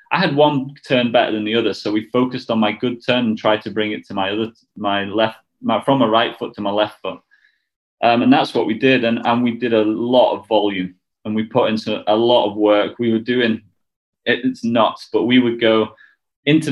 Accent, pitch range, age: British, 110-130 Hz, 20-39